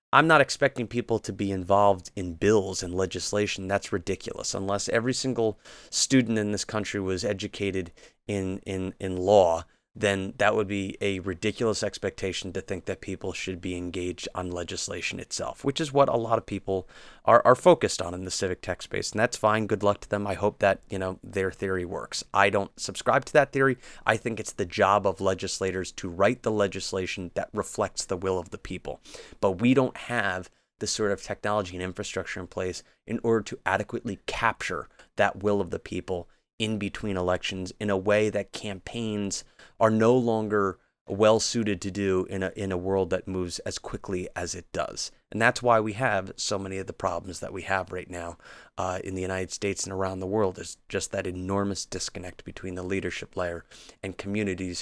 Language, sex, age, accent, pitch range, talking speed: English, male, 30-49, American, 95-105 Hz, 200 wpm